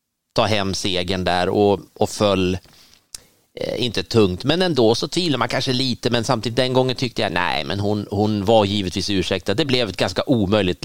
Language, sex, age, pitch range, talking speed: Swedish, male, 30-49, 100-125 Hz, 200 wpm